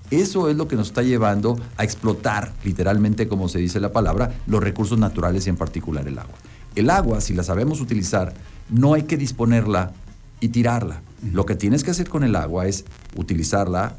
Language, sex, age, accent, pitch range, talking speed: Spanish, male, 50-69, Mexican, 95-125 Hz, 195 wpm